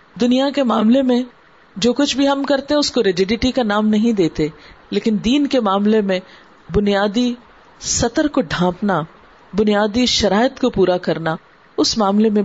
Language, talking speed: Urdu, 155 wpm